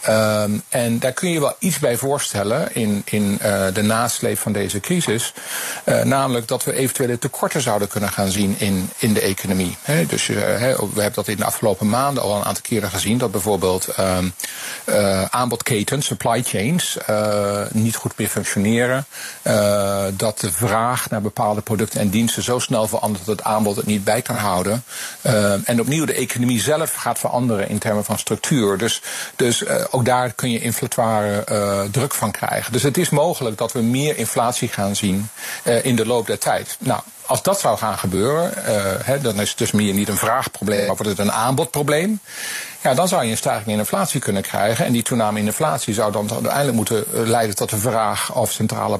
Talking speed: 195 wpm